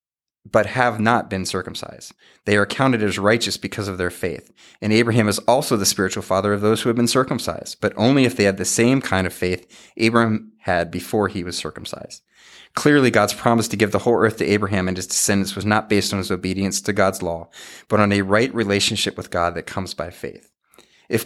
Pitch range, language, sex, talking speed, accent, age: 95-110 Hz, English, male, 215 wpm, American, 30-49